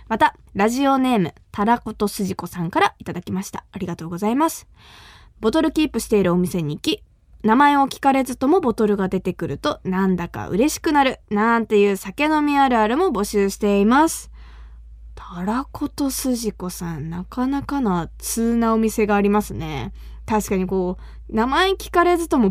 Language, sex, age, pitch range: Japanese, female, 20-39, 190-270 Hz